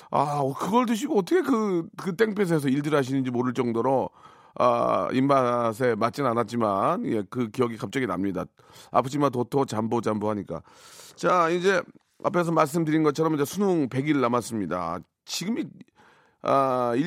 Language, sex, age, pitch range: Korean, male, 40-59, 135-200 Hz